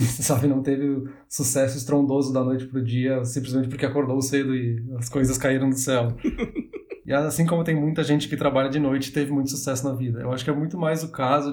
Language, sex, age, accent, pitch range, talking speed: Portuguese, male, 20-39, Brazilian, 135-160 Hz, 225 wpm